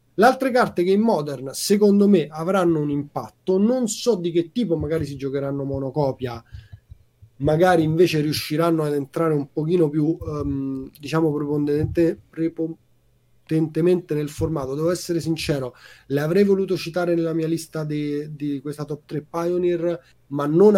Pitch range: 140-175 Hz